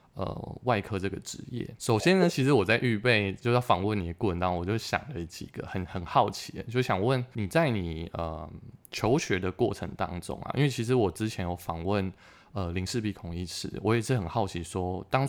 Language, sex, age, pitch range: Chinese, male, 20-39, 90-115 Hz